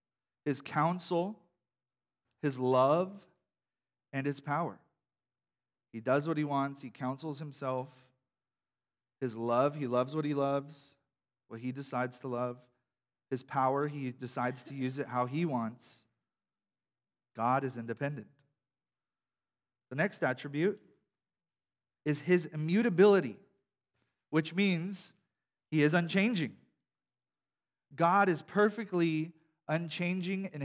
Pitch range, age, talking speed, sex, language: 125-165 Hz, 40-59, 110 wpm, male, English